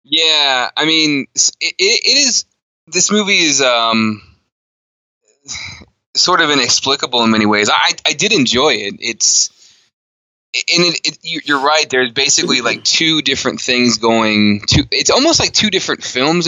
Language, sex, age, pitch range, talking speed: English, male, 20-39, 110-145 Hz, 150 wpm